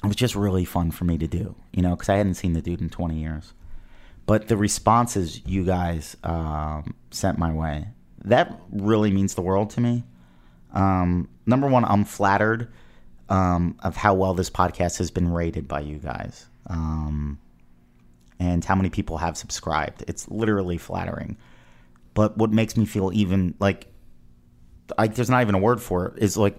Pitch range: 85-105 Hz